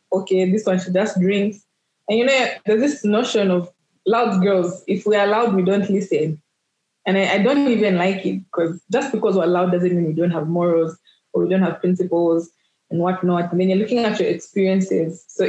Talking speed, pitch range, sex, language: 215 wpm, 175-210 Hz, female, English